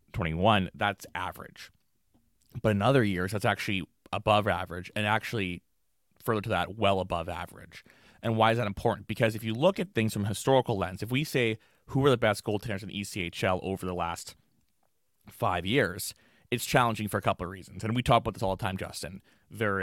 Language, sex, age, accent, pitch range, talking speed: English, male, 20-39, American, 95-120 Hz, 200 wpm